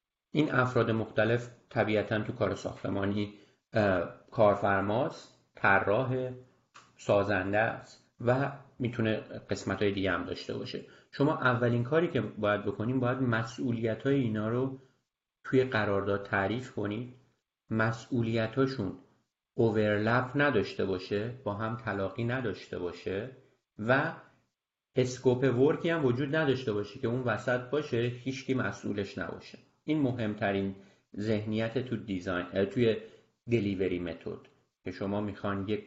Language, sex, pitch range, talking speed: Persian, male, 105-130 Hz, 110 wpm